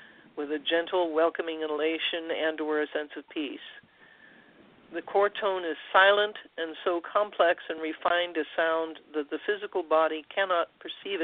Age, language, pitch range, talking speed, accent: 50-69, English, 165-245 Hz, 155 wpm, American